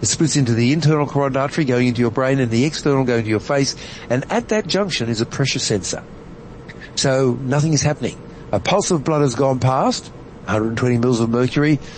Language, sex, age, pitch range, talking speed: English, male, 60-79, 120-150 Hz, 205 wpm